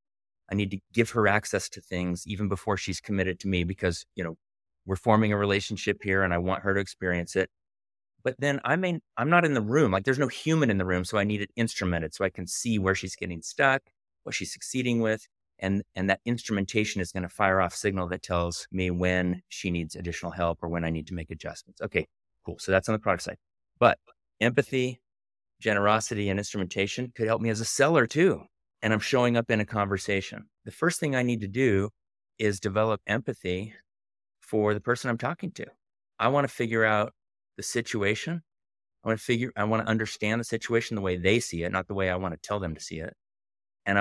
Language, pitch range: English, 90-110 Hz